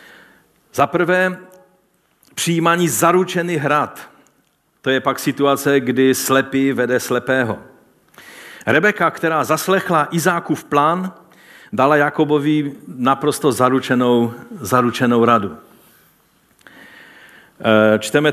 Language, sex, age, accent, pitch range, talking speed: Czech, male, 50-69, native, 120-165 Hz, 85 wpm